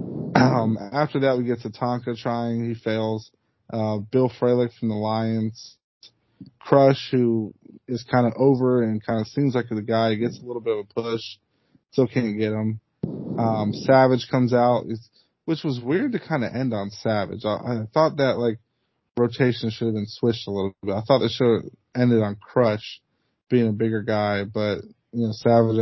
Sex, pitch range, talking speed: male, 110-120 Hz, 195 wpm